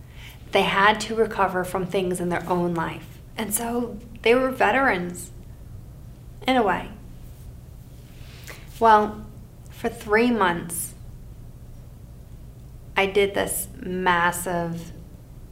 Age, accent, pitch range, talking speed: 30-49, American, 140-215 Hz, 100 wpm